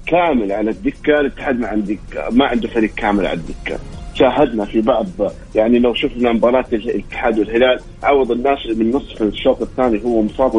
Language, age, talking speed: Arabic, 40-59, 165 wpm